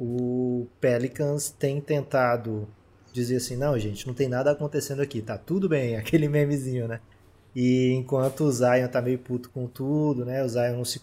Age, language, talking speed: 20-39, Portuguese, 180 wpm